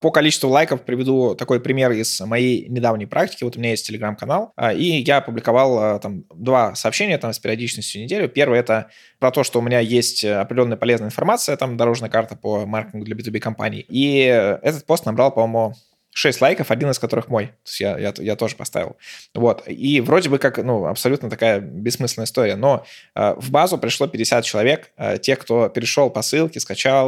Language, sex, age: Russian, male, 20-39